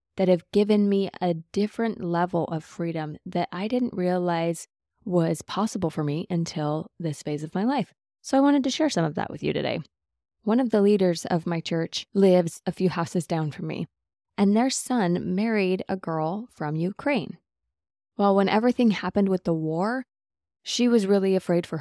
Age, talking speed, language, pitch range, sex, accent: 20-39, 185 wpm, English, 165-205 Hz, female, American